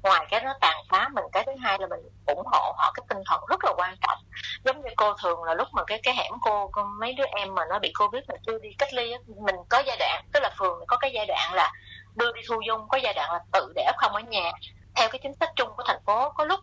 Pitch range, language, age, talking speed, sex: 195-260 Hz, Vietnamese, 20-39, 285 wpm, female